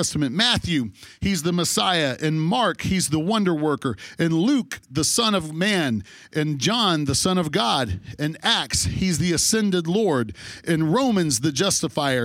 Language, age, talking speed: English, 40-59, 155 wpm